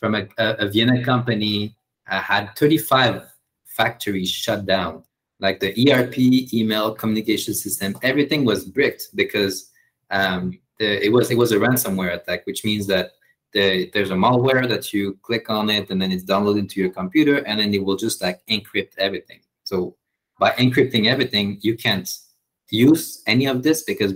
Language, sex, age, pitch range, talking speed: English, male, 20-39, 95-120 Hz, 170 wpm